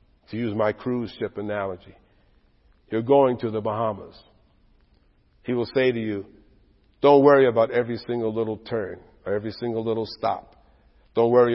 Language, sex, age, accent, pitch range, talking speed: English, male, 50-69, American, 110-155 Hz, 155 wpm